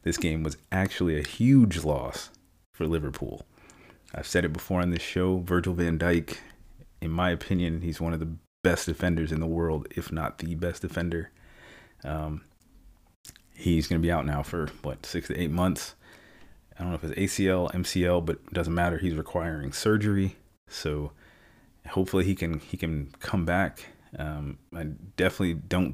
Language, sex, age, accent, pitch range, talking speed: English, male, 30-49, American, 80-90 Hz, 170 wpm